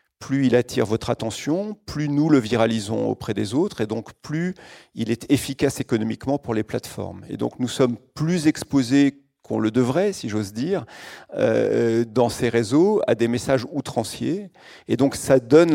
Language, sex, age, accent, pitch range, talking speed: French, male, 40-59, French, 115-135 Hz, 170 wpm